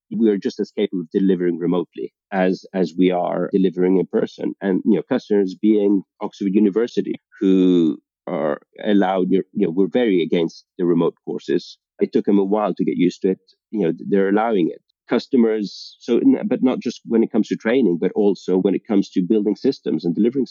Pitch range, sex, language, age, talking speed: 90-105 Hz, male, English, 40-59, 200 wpm